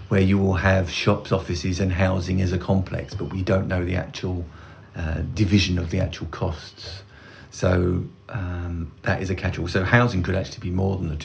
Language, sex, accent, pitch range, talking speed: English, male, British, 90-105 Hz, 210 wpm